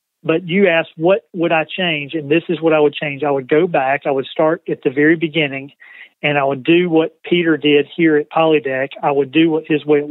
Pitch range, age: 145-165 Hz, 40-59